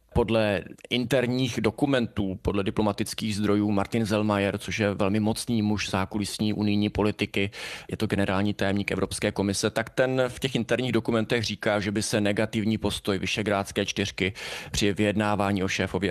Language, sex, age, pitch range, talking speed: Czech, male, 20-39, 100-110 Hz, 150 wpm